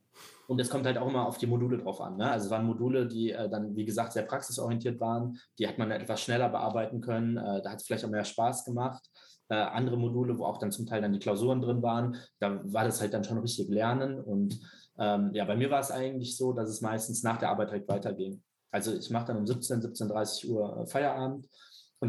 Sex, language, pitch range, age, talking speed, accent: male, German, 105-125 Hz, 20-39, 240 wpm, German